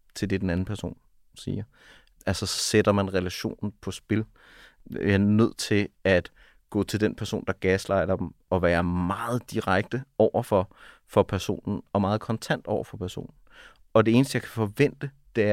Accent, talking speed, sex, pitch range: Danish, 175 wpm, male, 95-110 Hz